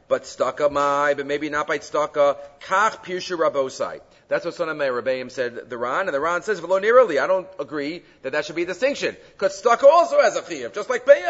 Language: English